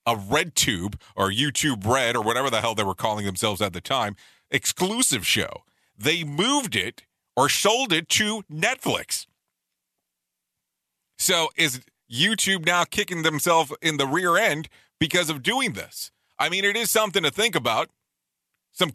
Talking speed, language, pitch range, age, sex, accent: 155 wpm, English, 115-165 Hz, 40-59, male, American